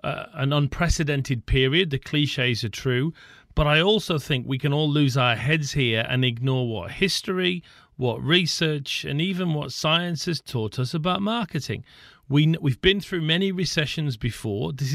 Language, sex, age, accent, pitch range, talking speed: English, male, 40-59, British, 120-160 Hz, 170 wpm